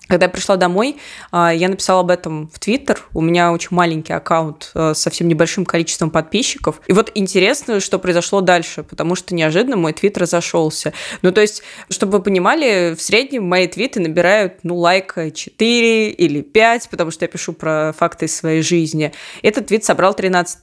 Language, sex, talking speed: Russian, female, 175 wpm